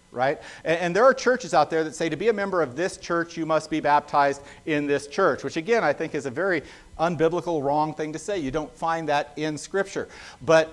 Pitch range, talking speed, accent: 145-180 Hz, 240 wpm, American